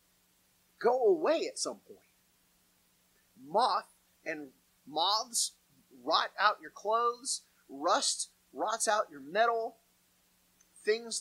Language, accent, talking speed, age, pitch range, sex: English, American, 95 wpm, 30-49, 210-295 Hz, male